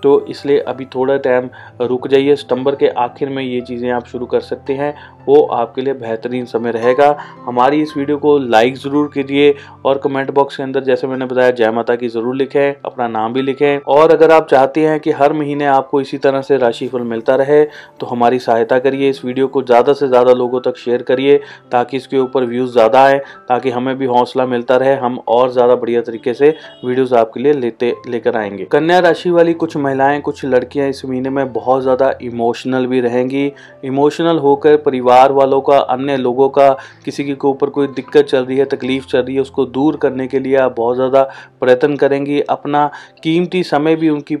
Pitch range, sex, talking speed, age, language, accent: 125-140 Hz, male, 205 wpm, 30-49, Hindi, native